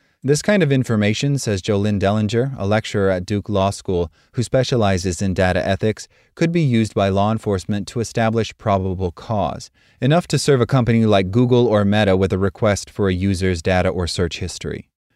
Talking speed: 185 wpm